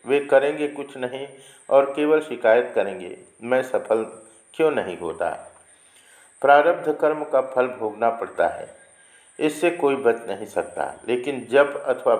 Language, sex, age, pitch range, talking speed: Hindi, male, 50-69, 120-150 Hz, 140 wpm